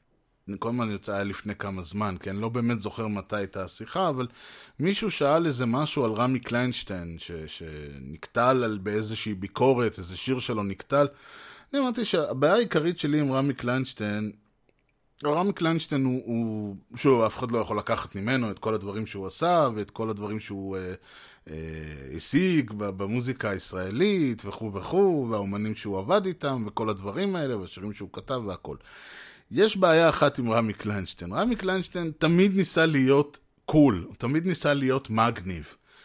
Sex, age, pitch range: male, 20-39, 110-150 Hz